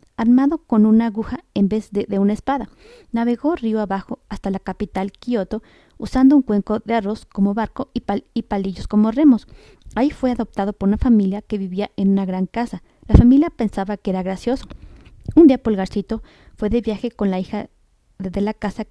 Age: 30-49